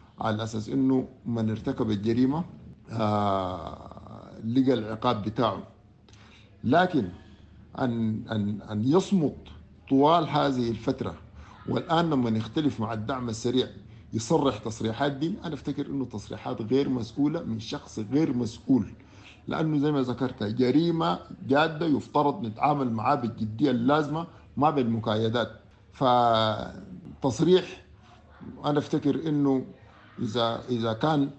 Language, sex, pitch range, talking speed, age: English, male, 110-145 Hz, 105 wpm, 50-69